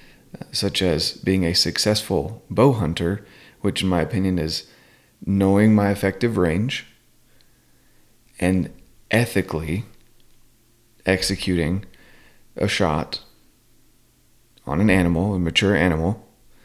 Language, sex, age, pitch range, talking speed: English, male, 30-49, 90-110 Hz, 95 wpm